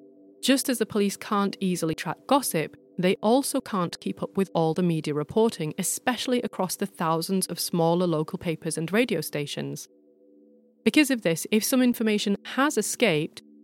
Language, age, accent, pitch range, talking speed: English, 30-49, British, 155-205 Hz, 165 wpm